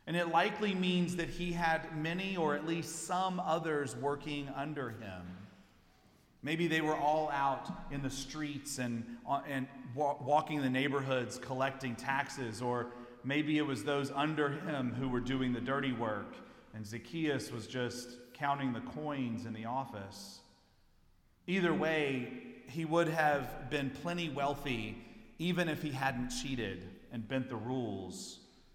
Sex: male